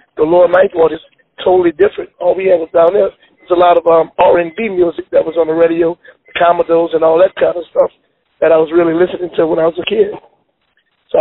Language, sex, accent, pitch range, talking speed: English, male, American, 165-195 Hz, 235 wpm